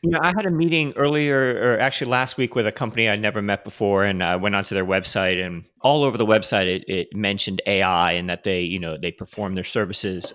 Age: 30-49